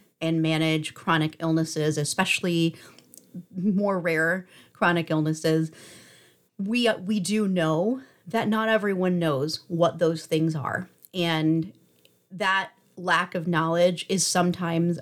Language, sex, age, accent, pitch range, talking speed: English, female, 30-49, American, 155-185 Hz, 110 wpm